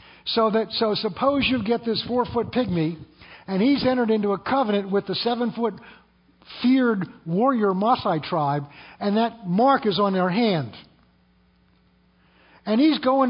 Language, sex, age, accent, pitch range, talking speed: English, male, 60-79, American, 175-245 Hz, 145 wpm